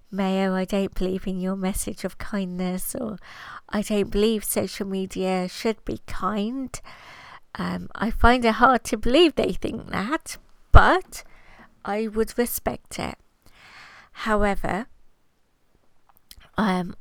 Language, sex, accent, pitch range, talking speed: English, female, British, 185-210 Hz, 125 wpm